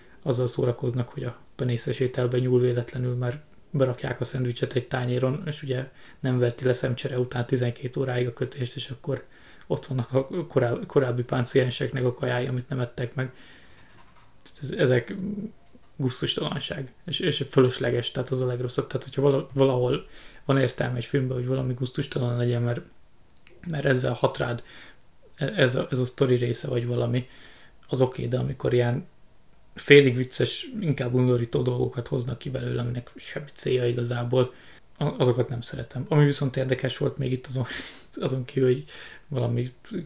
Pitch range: 120-135 Hz